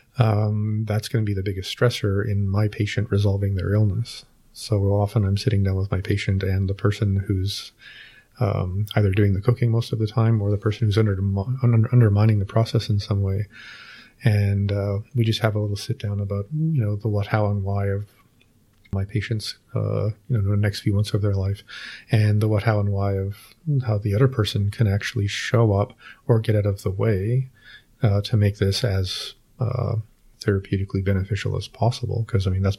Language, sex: English, male